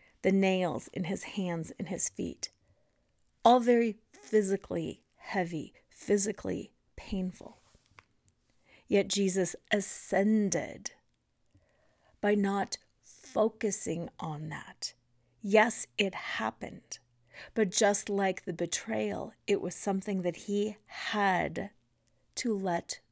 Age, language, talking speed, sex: 40-59, English, 100 wpm, female